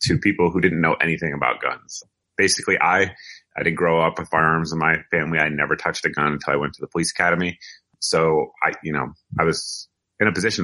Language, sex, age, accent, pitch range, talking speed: English, male, 30-49, American, 70-80 Hz, 225 wpm